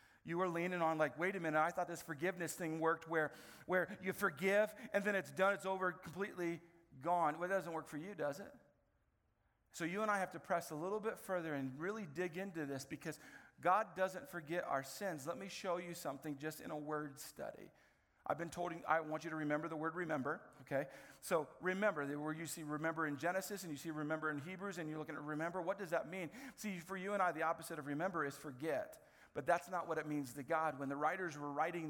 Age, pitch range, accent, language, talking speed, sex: 50-69, 150-185 Hz, American, English, 235 wpm, male